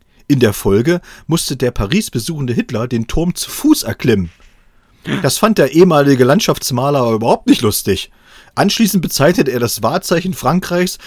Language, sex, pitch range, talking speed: German, male, 105-160 Hz, 150 wpm